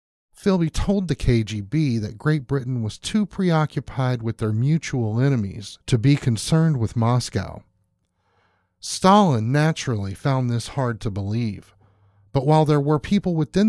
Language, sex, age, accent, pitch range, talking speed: English, male, 40-59, American, 110-155 Hz, 140 wpm